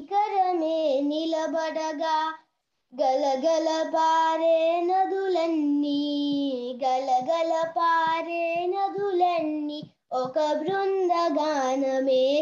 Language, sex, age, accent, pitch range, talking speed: Telugu, female, 20-39, native, 260-330 Hz, 55 wpm